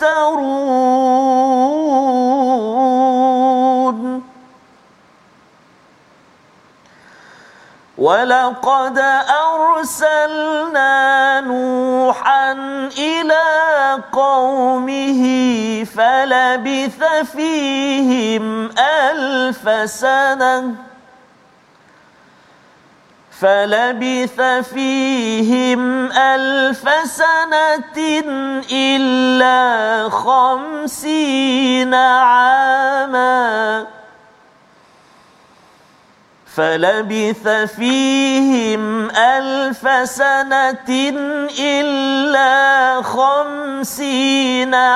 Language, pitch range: Malayalam, 255-275 Hz